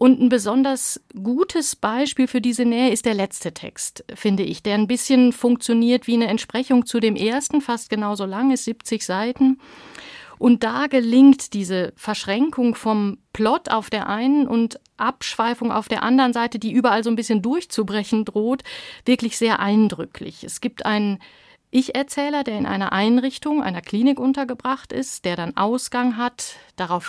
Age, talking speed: 50-69, 160 wpm